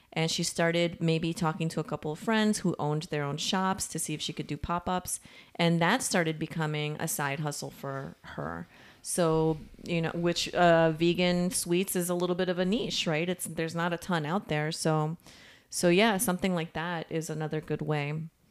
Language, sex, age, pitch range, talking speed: English, female, 30-49, 150-175 Hz, 205 wpm